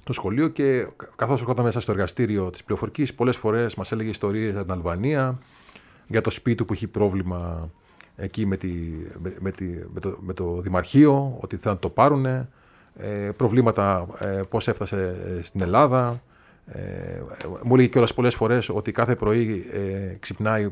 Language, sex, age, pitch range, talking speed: Greek, male, 30-49, 95-125 Hz, 150 wpm